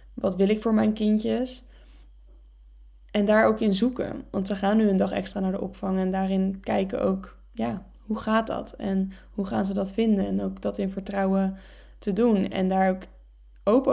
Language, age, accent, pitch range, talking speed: Dutch, 10-29, Dutch, 185-205 Hz, 200 wpm